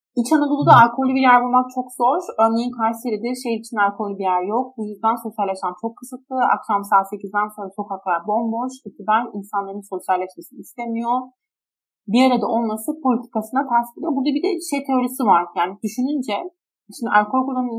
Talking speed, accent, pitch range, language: 160 wpm, native, 210-255 Hz, Turkish